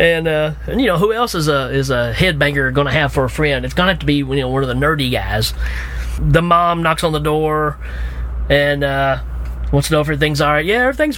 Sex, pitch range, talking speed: male, 130-160 Hz, 260 wpm